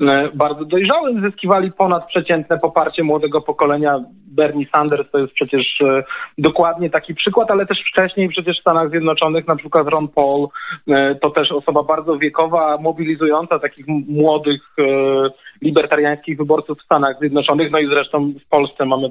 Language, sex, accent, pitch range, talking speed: Polish, male, native, 145-180 Hz, 150 wpm